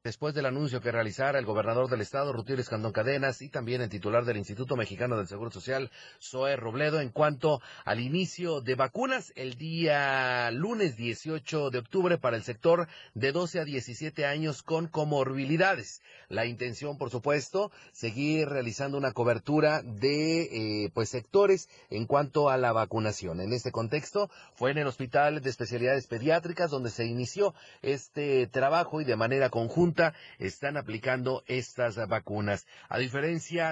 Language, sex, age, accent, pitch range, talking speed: Spanish, male, 40-59, Mexican, 120-155 Hz, 155 wpm